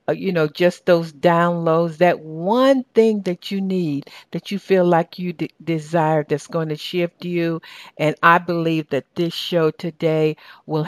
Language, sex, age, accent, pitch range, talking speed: English, female, 60-79, American, 170-210 Hz, 165 wpm